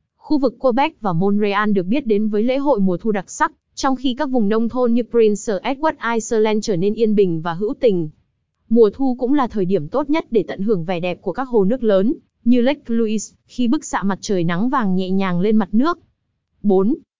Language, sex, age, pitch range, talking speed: Vietnamese, female, 20-39, 205-250 Hz, 230 wpm